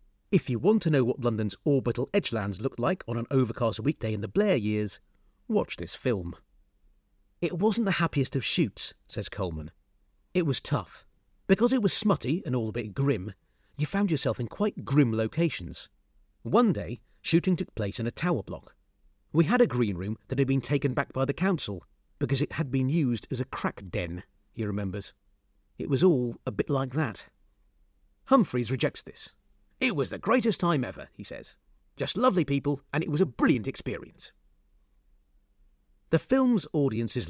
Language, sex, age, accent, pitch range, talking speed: English, male, 40-59, British, 100-165 Hz, 180 wpm